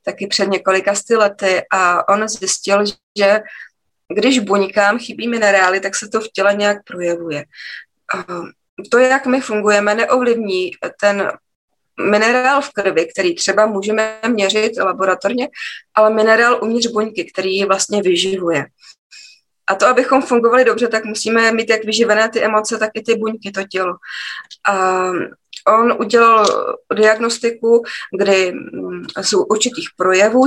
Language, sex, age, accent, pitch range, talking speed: Czech, female, 20-39, native, 195-225 Hz, 130 wpm